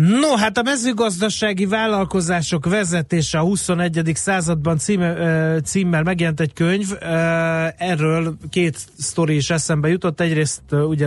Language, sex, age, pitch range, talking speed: Hungarian, male, 30-49, 140-170 Hz, 120 wpm